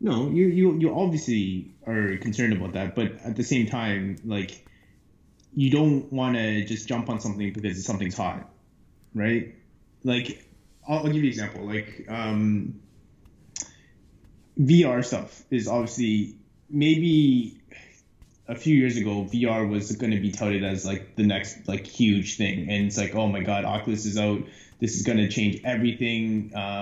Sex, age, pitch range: male, 20-39, 100-120 Hz